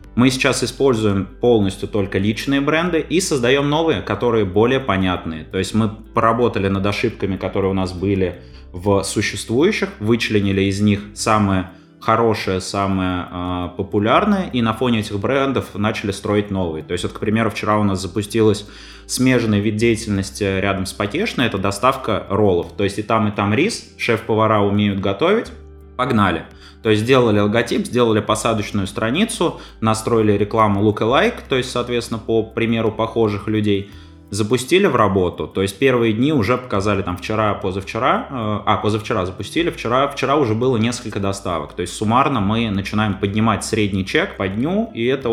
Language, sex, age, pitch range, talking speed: Russian, male, 20-39, 100-120 Hz, 155 wpm